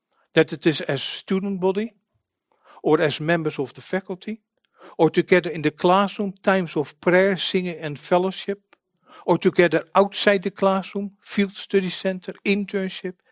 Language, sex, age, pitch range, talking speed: English, male, 50-69, 155-195 Hz, 150 wpm